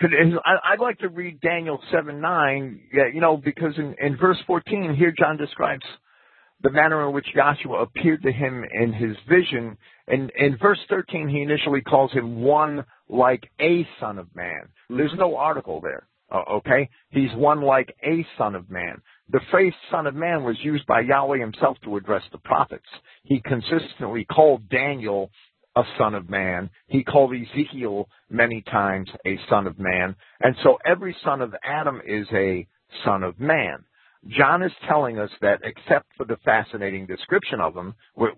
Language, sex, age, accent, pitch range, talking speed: English, male, 50-69, American, 110-155 Hz, 170 wpm